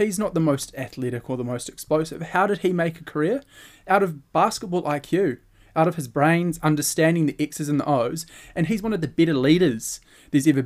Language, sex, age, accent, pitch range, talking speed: English, male, 20-39, Australian, 120-155 Hz, 215 wpm